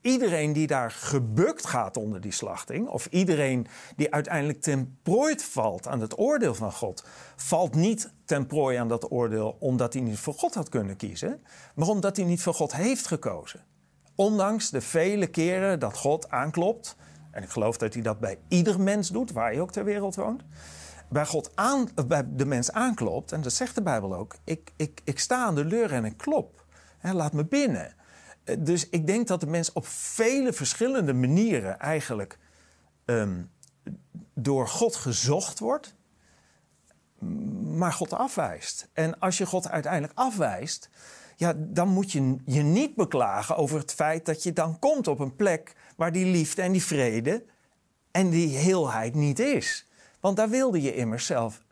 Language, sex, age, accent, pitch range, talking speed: Dutch, male, 40-59, Dutch, 130-195 Hz, 175 wpm